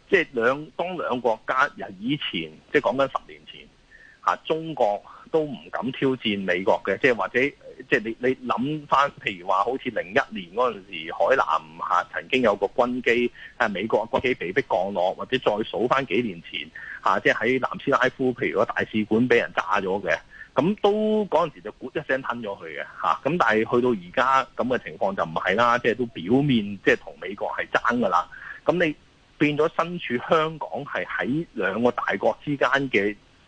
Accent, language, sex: native, Chinese, male